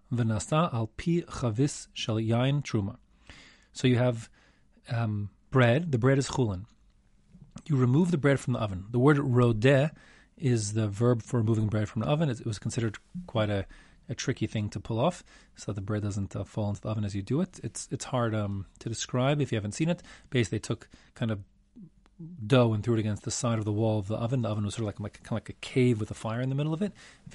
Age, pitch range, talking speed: 40-59, 110-135 Hz, 235 wpm